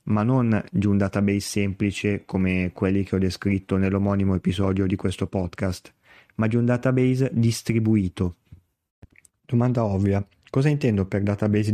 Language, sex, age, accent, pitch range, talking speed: Italian, male, 20-39, native, 100-120 Hz, 140 wpm